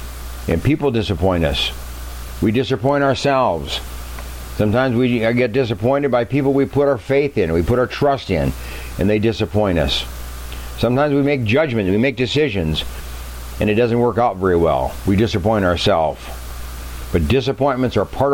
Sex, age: male, 60-79